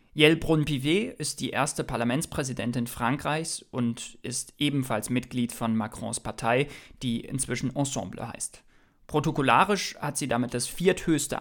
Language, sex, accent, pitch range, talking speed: German, male, German, 120-145 Hz, 125 wpm